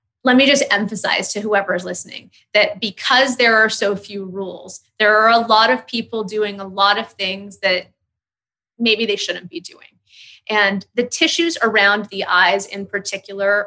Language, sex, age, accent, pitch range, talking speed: English, female, 20-39, American, 195-235 Hz, 175 wpm